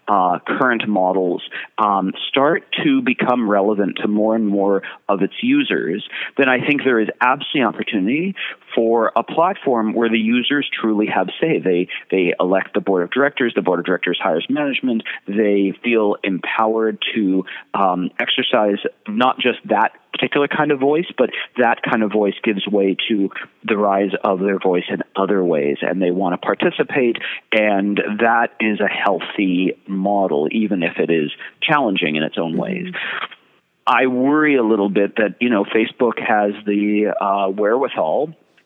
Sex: male